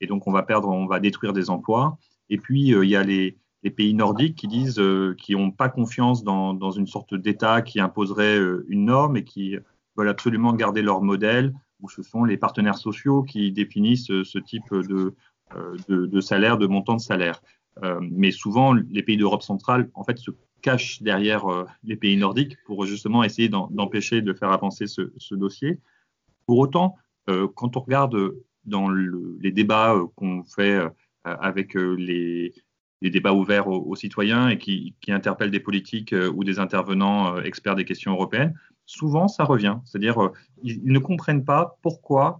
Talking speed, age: 200 wpm, 40-59